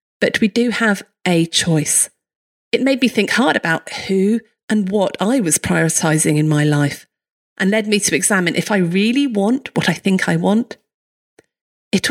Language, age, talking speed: English, 40-59, 180 wpm